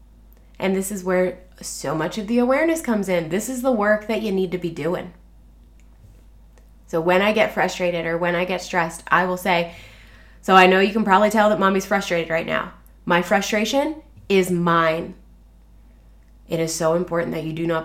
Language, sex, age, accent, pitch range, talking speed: English, female, 20-39, American, 165-215 Hz, 195 wpm